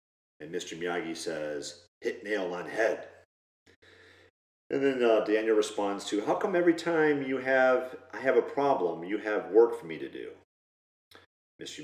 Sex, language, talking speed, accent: male, English, 160 wpm, American